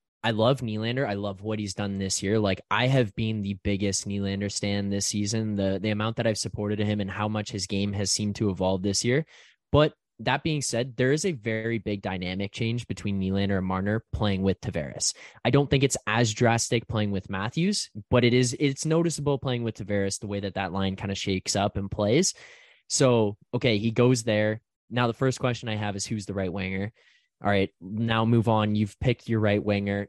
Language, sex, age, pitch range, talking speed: English, male, 10-29, 100-120 Hz, 220 wpm